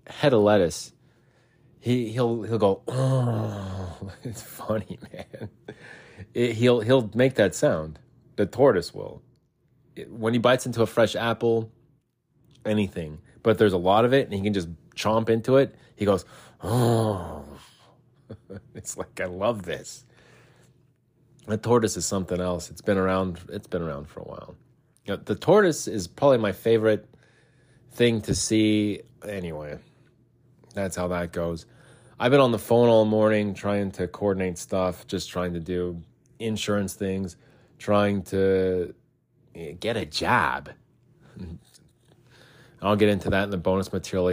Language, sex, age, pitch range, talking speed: English, male, 30-49, 95-125 Hz, 140 wpm